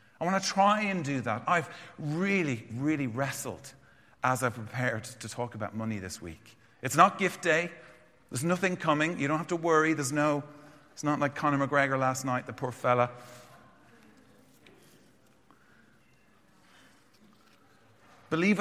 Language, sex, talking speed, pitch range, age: English, male, 145 wpm, 120-165 Hz, 40-59